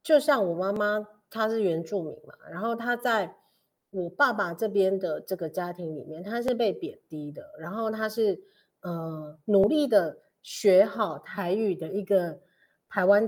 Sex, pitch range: female, 165-220 Hz